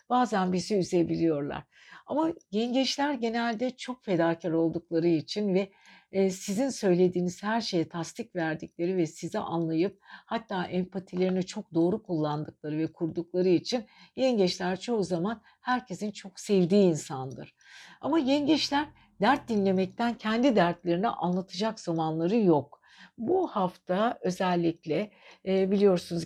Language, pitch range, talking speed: Turkish, 170-220 Hz, 110 wpm